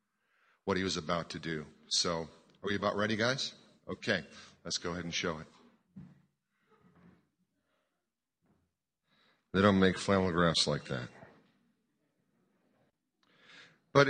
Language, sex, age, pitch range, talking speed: English, male, 40-59, 95-120 Hz, 110 wpm